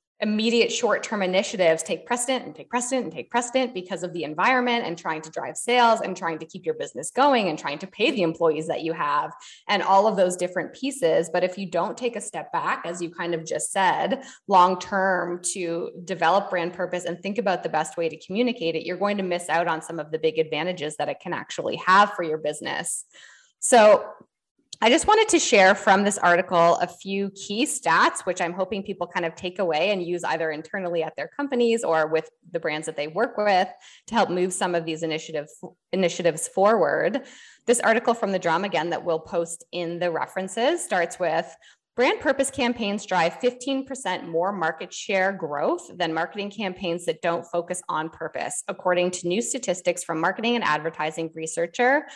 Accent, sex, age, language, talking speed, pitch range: American, female, 20-39, English, 200 wpm, 170-220 Hz